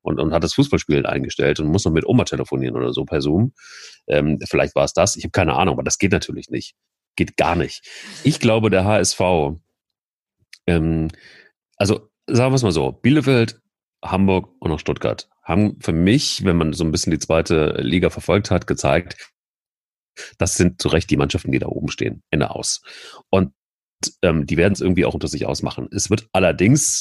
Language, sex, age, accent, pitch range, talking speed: German, male, 40-59, German, 80-110 Hz, 195 wpm